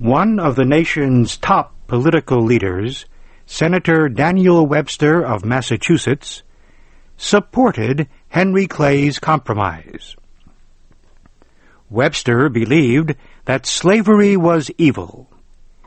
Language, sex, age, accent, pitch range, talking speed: English, male, 60-79, American, 115-170 Hz, 85 wpm